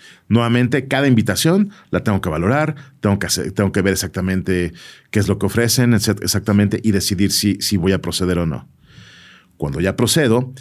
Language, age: Spanish, 40-59